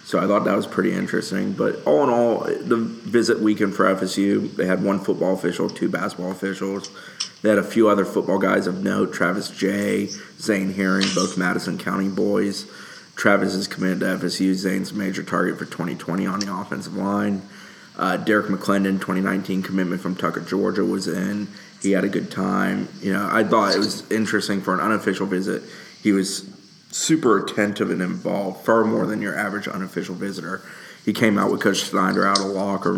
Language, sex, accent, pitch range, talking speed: English, male, American, 95-100 Hz, 190 wpm